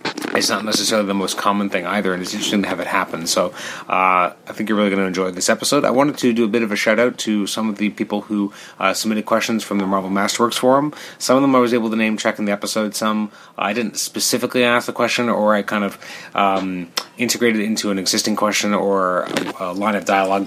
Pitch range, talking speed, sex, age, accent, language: 95-110 Hz, 245 wpm, male, 30-49, American, English